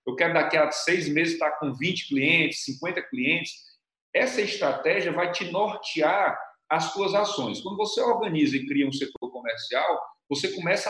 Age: 40-59